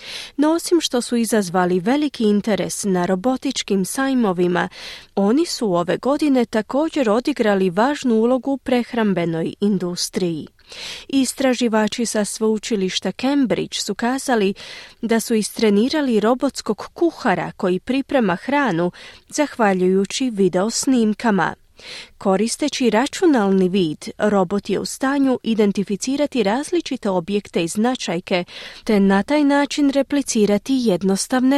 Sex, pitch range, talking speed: female, 200-265 Hz, 105 wpm